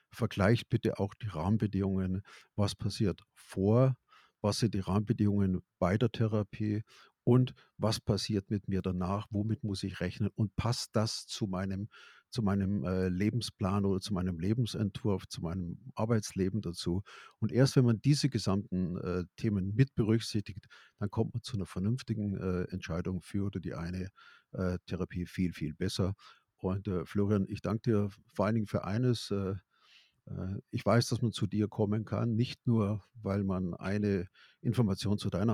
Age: 50-69